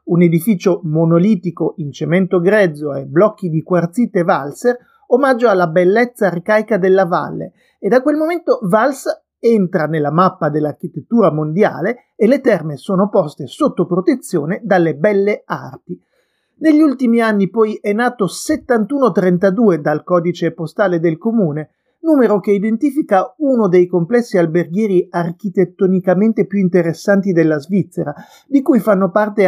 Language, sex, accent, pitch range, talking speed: Italian, male, native, 175-220 Hz, 130 wpm